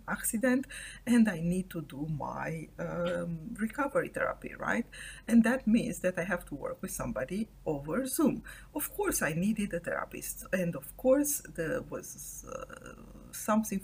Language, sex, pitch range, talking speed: English, female, 175-255 Hz, 155 wpm